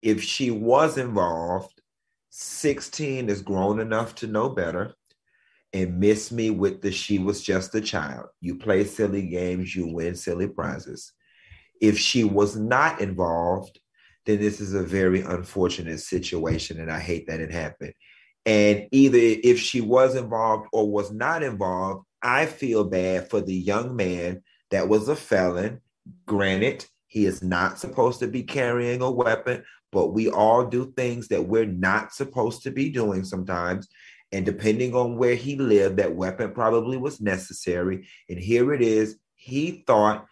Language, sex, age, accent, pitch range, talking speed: English, male, 30-49, American, 95-125 Hz, 160 wpm